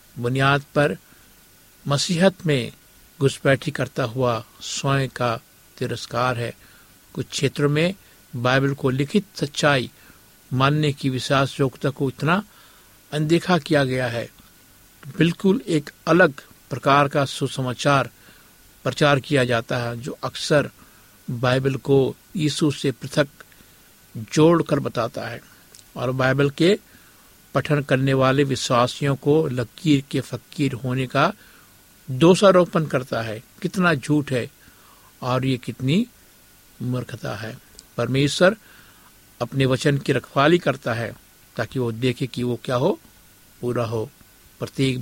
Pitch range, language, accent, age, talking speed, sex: 125-145 Hz, Hindi, native, 60-79, 120 wpm, male